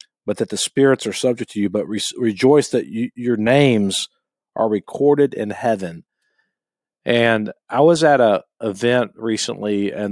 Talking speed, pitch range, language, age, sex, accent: 160 wpm, 105-130 Hz, English, 40-59, male, American